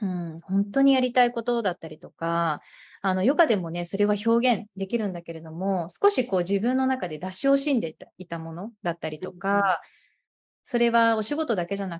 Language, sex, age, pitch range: Japanese, female, 20-39, 170-235 Hz